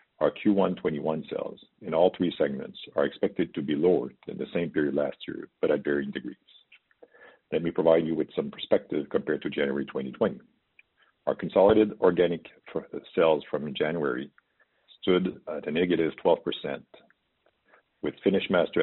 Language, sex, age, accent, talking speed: English, male, 50-69, American, 150 wpm